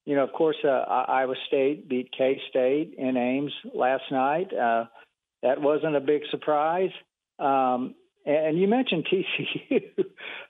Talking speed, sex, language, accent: 145 wpm, male, English, American